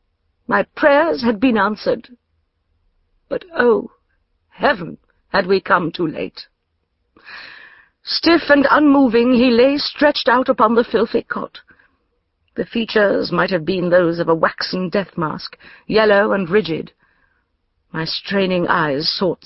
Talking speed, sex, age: 125 wpm, female, 50-69